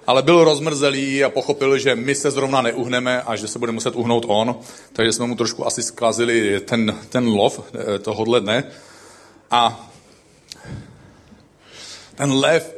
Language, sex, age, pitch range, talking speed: Czech, male, 40-59, 115-160 Hz, 145 wpm